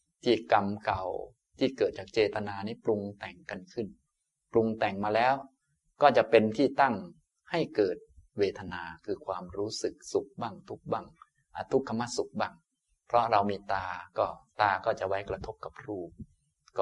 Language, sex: Thai, male